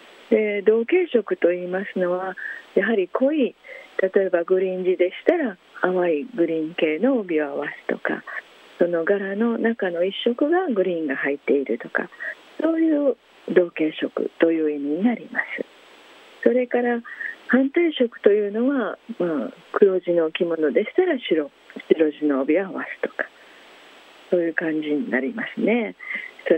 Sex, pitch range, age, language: female, 180-270 Hz, 40-59, Japanese